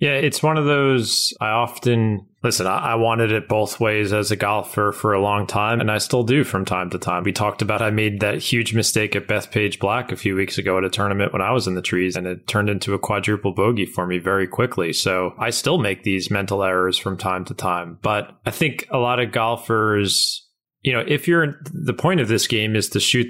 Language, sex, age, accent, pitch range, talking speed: English, male, 30-49, American, 100-120 Hz, 240 wpm